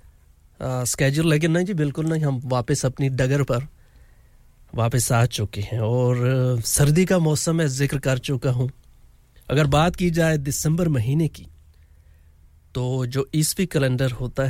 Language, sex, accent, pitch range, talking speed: English, male, Indian, 120-145 Hz, 150 wpm